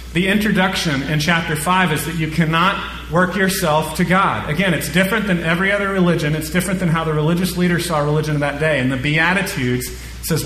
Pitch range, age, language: 135-175 Hz, 30-49, English